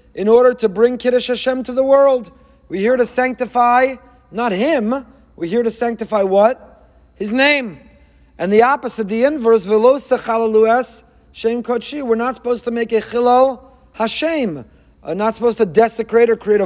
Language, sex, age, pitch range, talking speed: English, male, 40-59, 220-260 Hz, 150 wpm